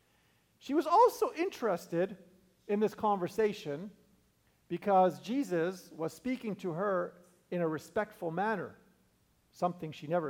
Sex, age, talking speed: male, 50-69, 115 wpm